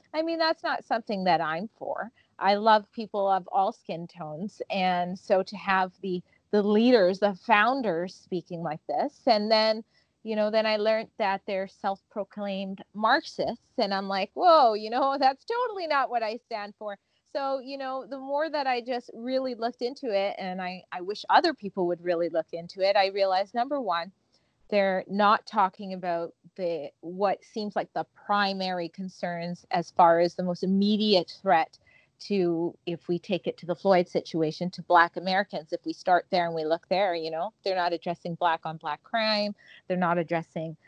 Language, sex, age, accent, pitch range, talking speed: English, female, 30-49, American, 175-220 Hz, 190 wpm